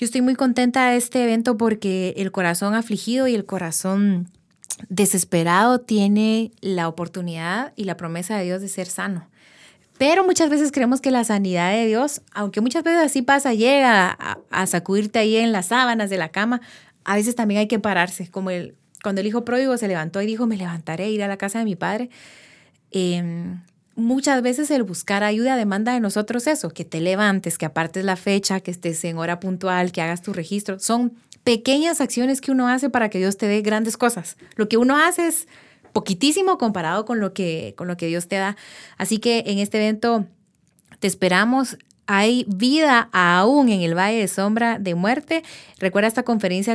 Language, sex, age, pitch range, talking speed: Spanish, female, 20-39, 185-240 Hz, 195 wpm